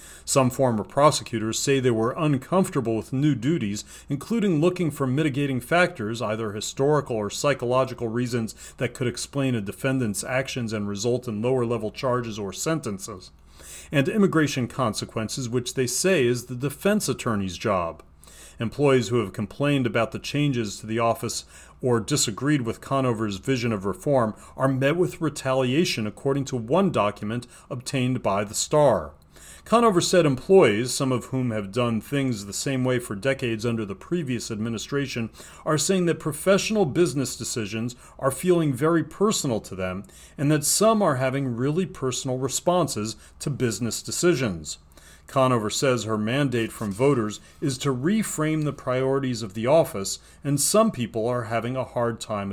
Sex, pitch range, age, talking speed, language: male, 110-145 Hz, 40-59, 155 wpm, English